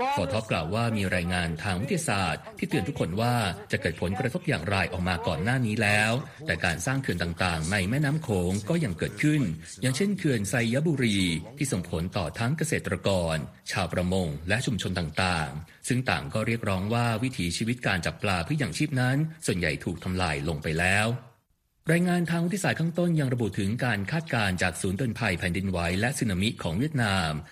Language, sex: Thai, male